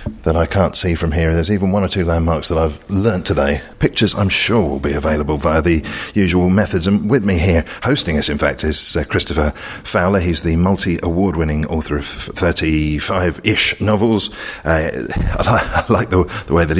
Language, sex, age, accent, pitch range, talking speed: English, male, 40-59, British, 75-95 Hz, 205 wpm